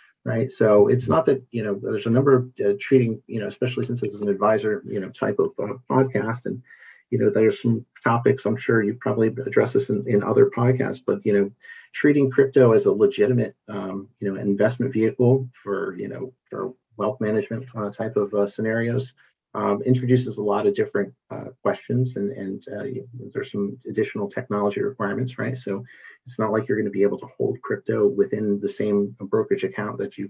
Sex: male